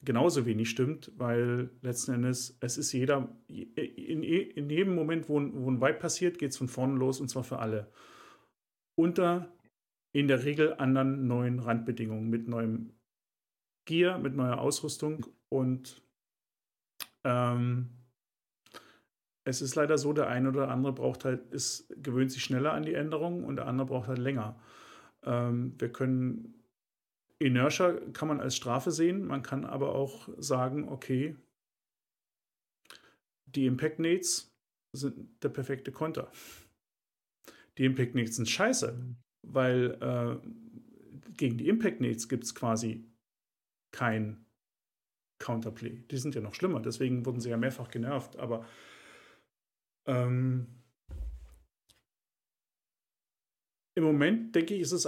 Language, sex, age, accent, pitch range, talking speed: German, male, 40-59, German, 120-150 Hz, 135 wpm